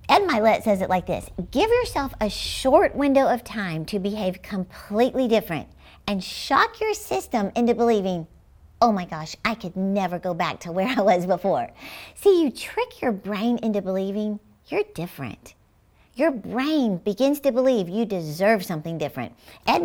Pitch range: 190-265 Hz